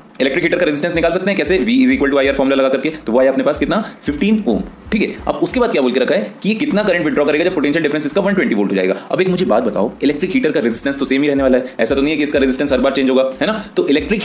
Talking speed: 65 wpm